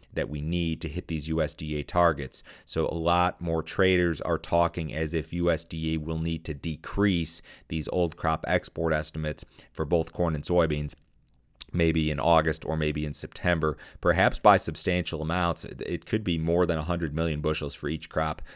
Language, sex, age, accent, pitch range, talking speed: English, male, 30-49, American, 80-90 Hz, 175 wpm